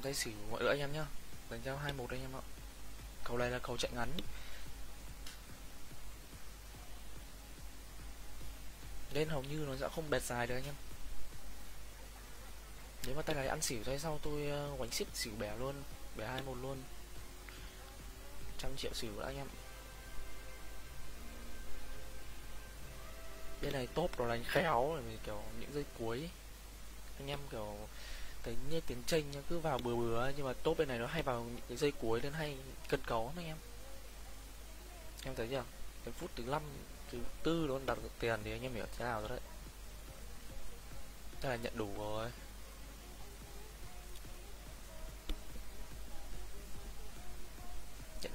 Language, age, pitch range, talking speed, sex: Vietnamese, 20-39, 110-140 Hz, 150 wpm, male